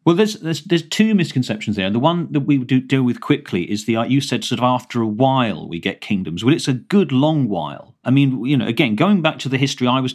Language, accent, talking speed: English, British, 265 wpm